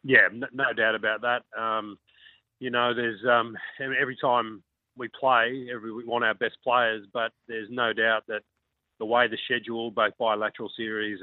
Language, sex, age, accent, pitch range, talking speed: English, male, 30-49, Australian, 110-130 Hz, 165 wpm